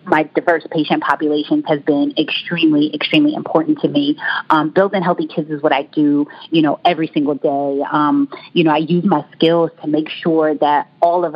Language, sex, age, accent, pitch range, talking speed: English, female, 30-49, American, 150-190 Hz, 195 wpm